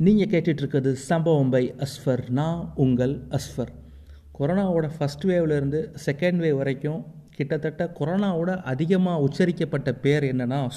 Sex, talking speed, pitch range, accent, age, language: male, 105 wpm, 135-170 Hz, native, 30-49, Tamil